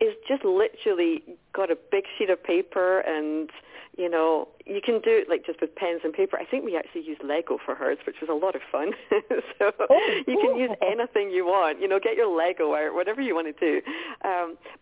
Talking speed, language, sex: 225 wpm, English, female